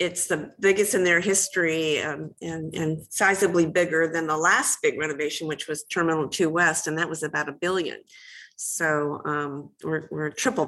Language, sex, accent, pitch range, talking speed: English, female, American, 150-195 Hz, 180 wpm